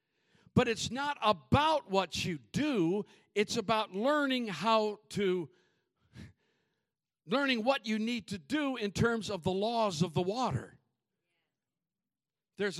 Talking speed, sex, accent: 125 wpm, male, American